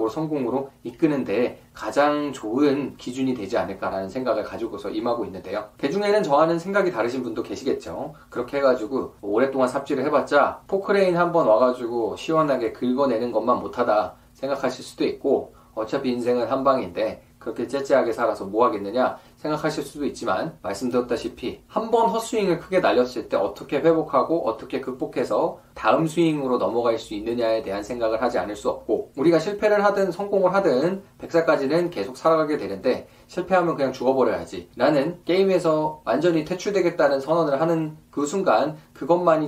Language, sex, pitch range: Korean, male, 125-170 Hz